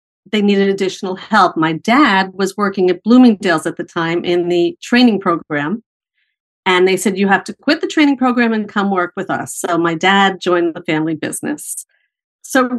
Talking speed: 190 wpm